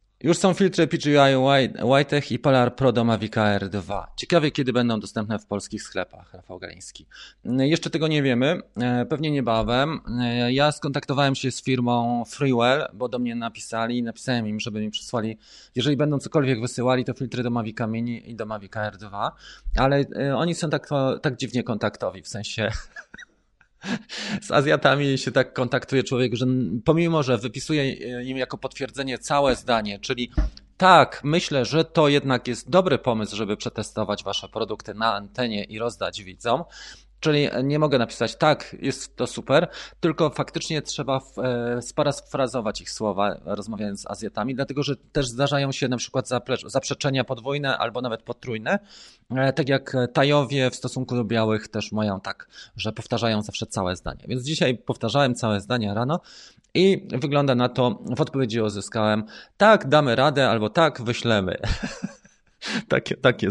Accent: native